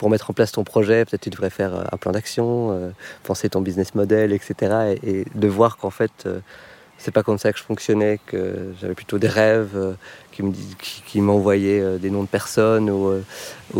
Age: 30-49